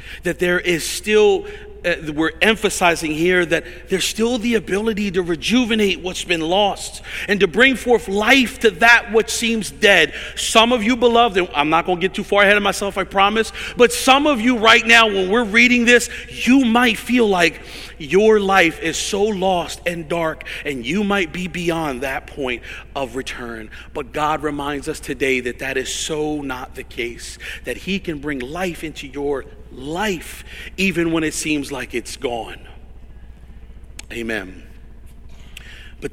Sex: male